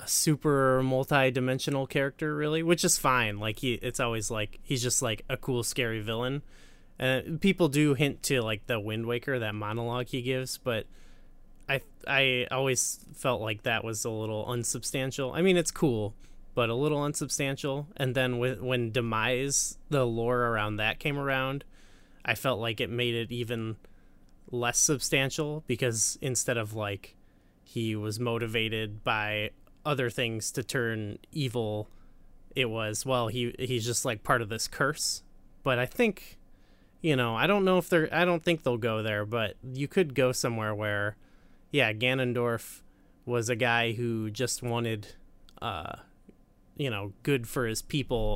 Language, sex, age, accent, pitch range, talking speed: English, male, 20-39, American, 110-135 Hz, 165 wpm